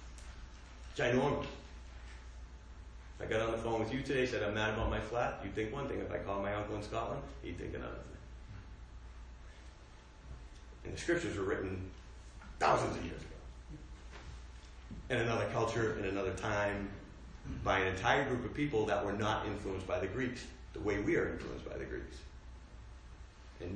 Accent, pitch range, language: American, 75-110 Hz, English